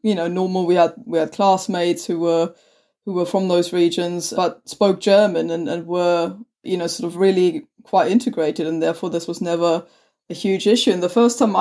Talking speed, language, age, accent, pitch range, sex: 205 wpm, German, 20-39, British, 175-205 Hz, female